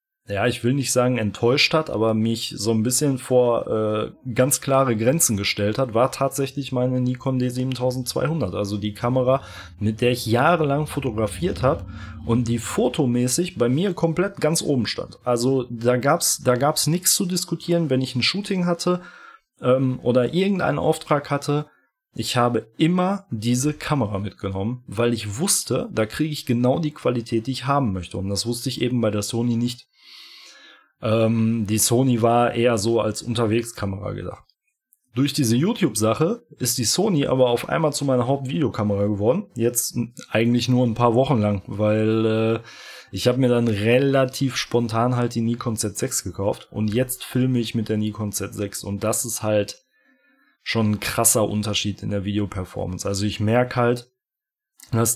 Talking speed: 170 wpm